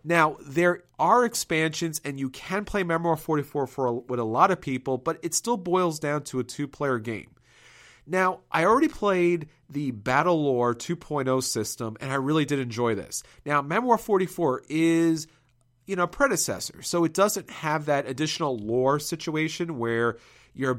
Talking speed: 170 wpm